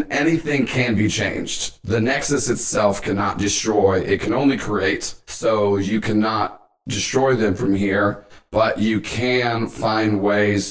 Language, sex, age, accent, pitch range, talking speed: English, male, 40-59, American, 100-115 Hz, 140 wpm